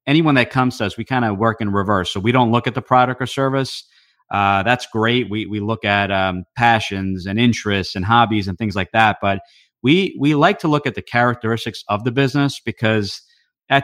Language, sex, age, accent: English, male, 30-49, American